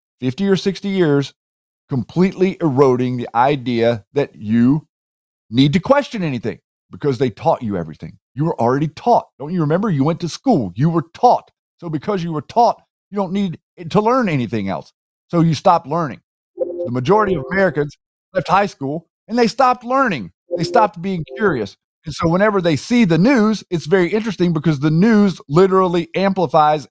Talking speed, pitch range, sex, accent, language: 175 wpm, 135-190 Hz, male, American, English